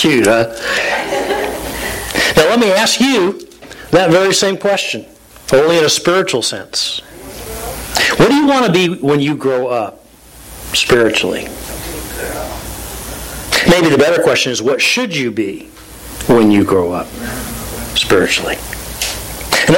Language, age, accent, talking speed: English, 50-69, American, 120 wpm